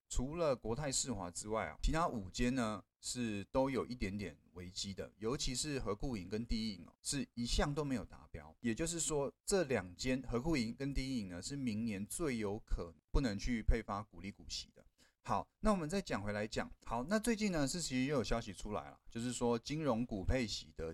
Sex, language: male, Chinese